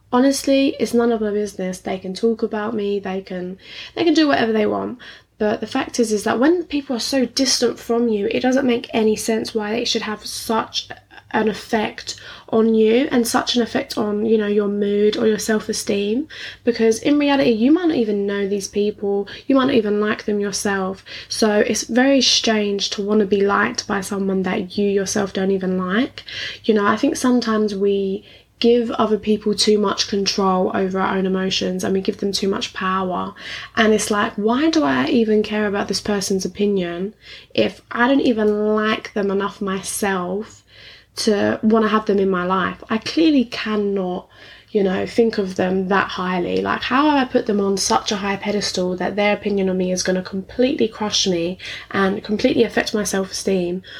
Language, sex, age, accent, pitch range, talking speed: English, female, 10-29, British, 195-230 Hz, 200 wpm